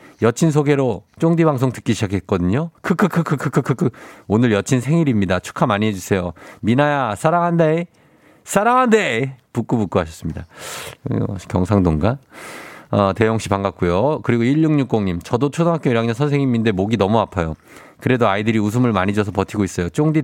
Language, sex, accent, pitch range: Korean, male, native, 100-145 Hz